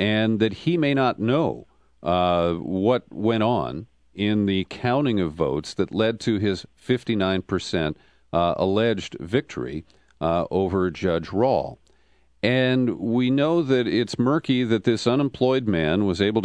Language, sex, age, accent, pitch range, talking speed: English, male, 50-69, American, 90-120 Hz, 140 wpm